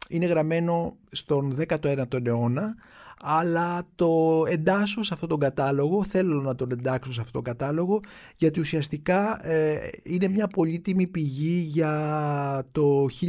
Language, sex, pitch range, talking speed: Greek, male, 130-170 Hz, 130 wpm